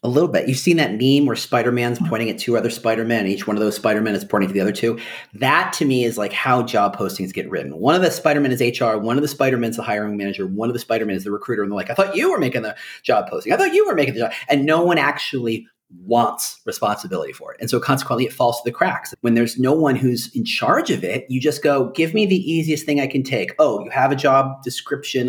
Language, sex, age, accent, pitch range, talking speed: English, male, 40-59, American, 120-165 Hz, 275 wpm